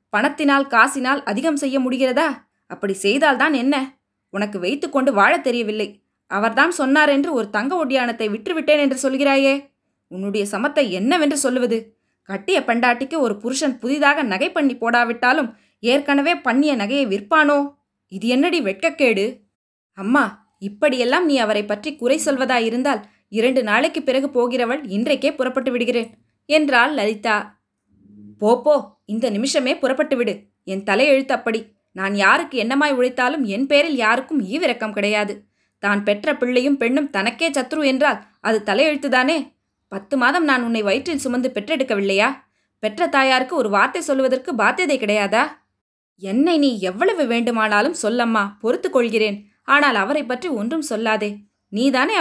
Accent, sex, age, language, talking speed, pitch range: native, female, 20-39, Tamil, 125 wpm, 215-285 Hz